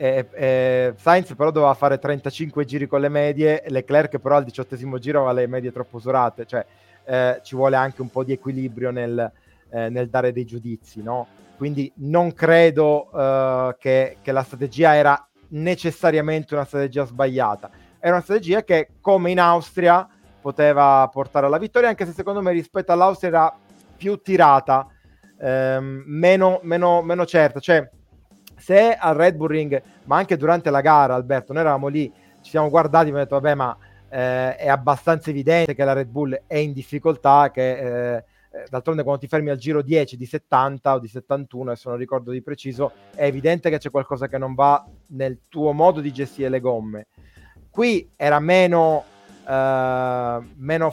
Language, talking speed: Italian, 170 wpm